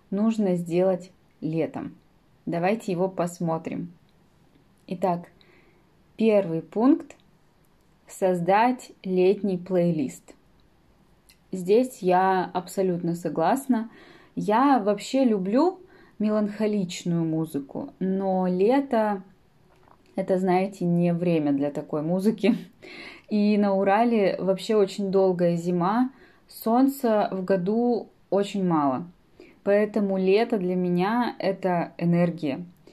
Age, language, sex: 20-39, Russian, female